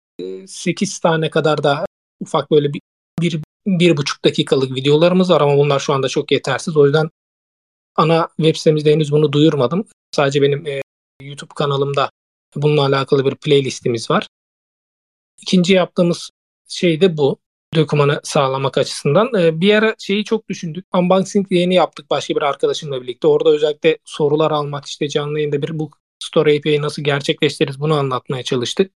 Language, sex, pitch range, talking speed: English, male, 145-195 Hz, 155 wpm